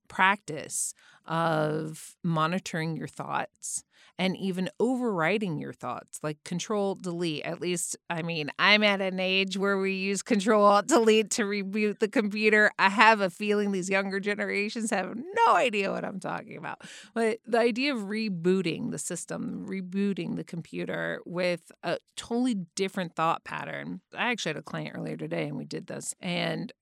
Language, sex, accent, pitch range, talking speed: English, female, American, 155-200 Hz, 160 wpm